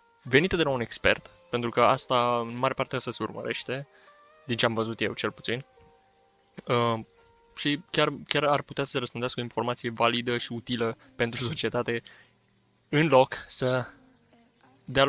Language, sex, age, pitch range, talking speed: Romanian, male, 20-39, 115-130 Hz, 165 wpm